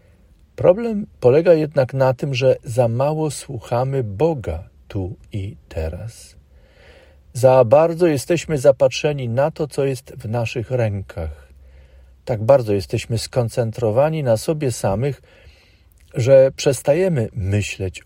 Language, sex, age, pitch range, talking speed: Polish, male, 50-69, 90-140 Hz, 115 wpm